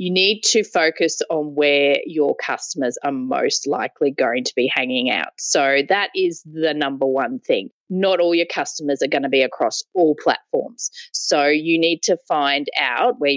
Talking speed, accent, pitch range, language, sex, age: 185 wpm, Australian, 145-210 Hz, English, female, 30-49